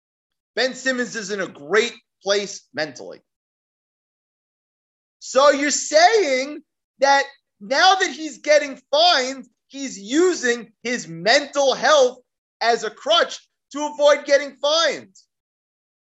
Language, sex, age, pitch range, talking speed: English, male, 30-49, 230-300 Hz, 110 wpm